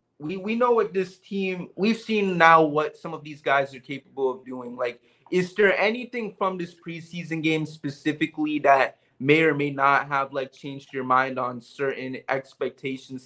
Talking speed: 180 wpm